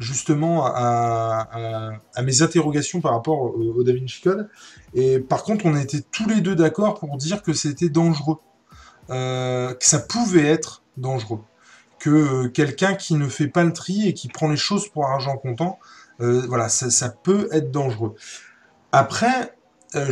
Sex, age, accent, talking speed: male, 20-39, French, 175 wpm